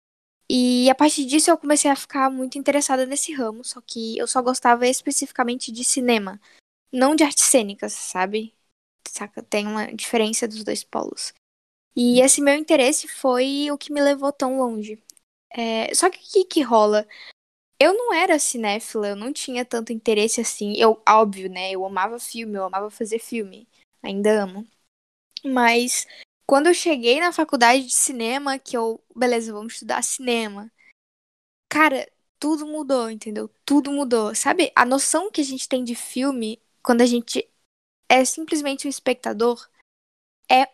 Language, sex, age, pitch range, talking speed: Portuguese, female, 10-29, 225-280 Hz, 160 wpm